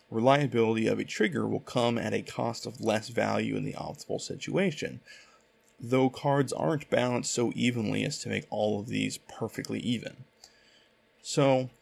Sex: male